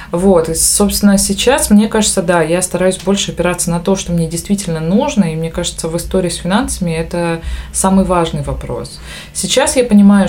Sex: female